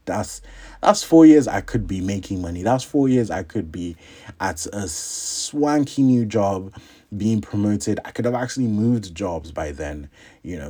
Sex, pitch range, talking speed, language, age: male, 80-105 Hz, 180 wpm, English, 30-49